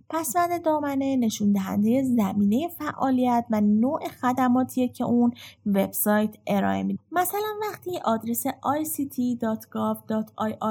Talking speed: 105 wpm